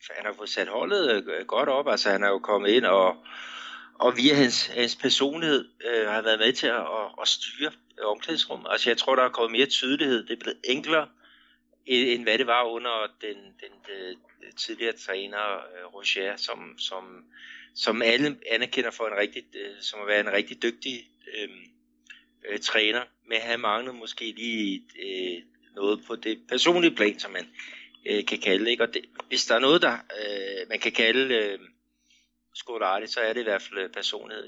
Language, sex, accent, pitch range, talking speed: Danish, male, native, 100-150 Hz, 185 wpm